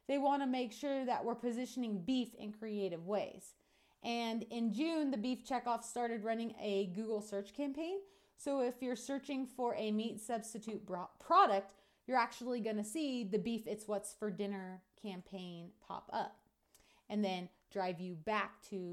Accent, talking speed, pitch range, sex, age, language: American, 170 wpm, 200-255 Hz, female, 30-49, English